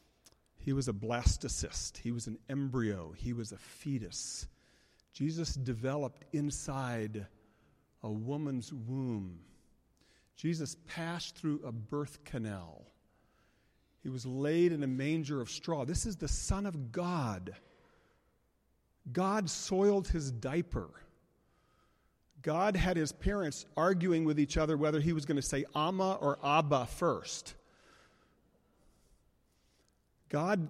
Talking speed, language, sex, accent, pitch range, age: 120 wpm, English, male, American, 130-180 Hz, 40-59